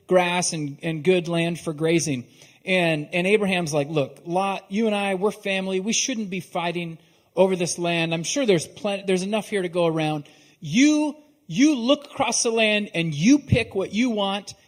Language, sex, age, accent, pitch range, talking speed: English, male, 40-59, American, 155-220 Hz, 190 wpm